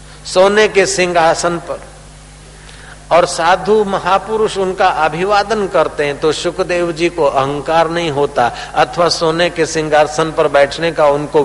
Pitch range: 125-180 Hz